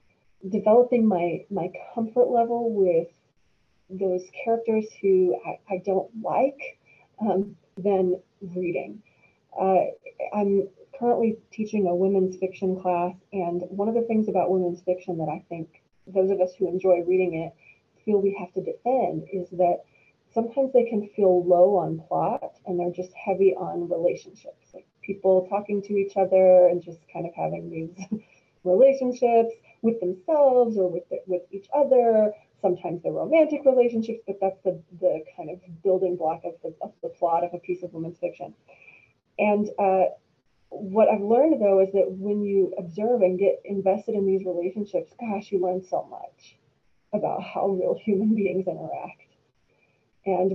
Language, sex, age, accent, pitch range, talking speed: English, female, 30-49, American, 180-215 Hz, 160 wpm